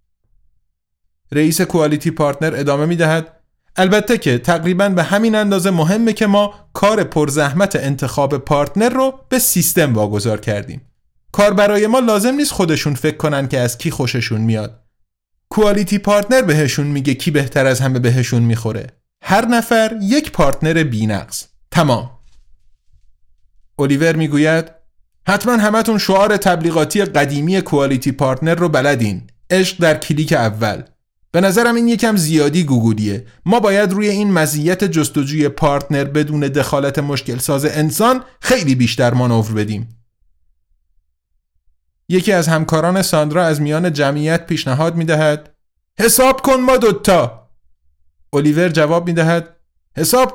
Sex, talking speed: male, 125 wpm